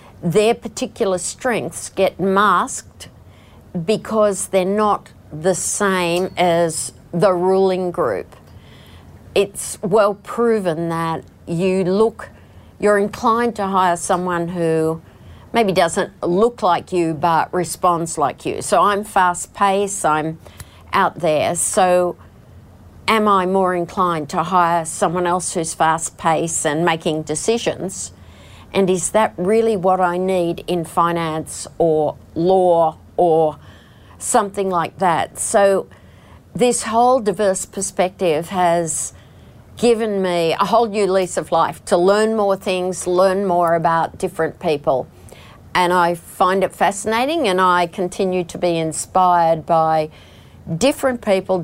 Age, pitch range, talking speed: 50-69, 165-195 Hz, 125 wpm